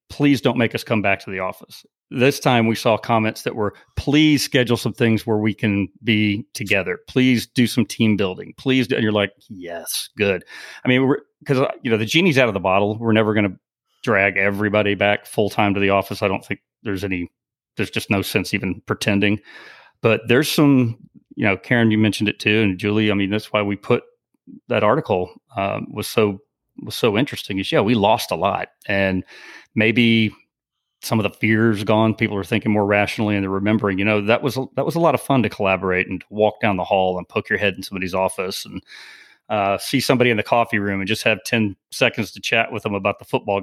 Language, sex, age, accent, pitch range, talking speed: English, male, 40-59, American, 100-120 Hz, 225 wpm